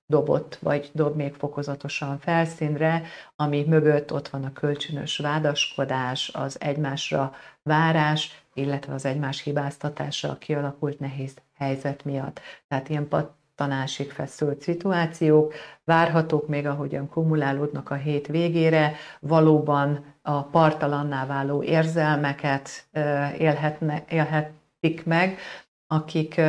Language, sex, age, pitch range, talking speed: Hungarian, female, 40-59, 140-155 Hz, 100 wpm